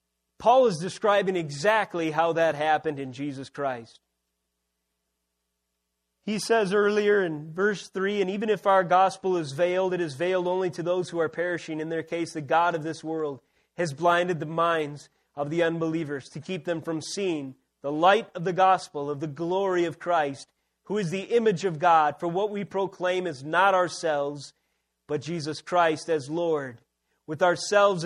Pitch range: 145-190 Hz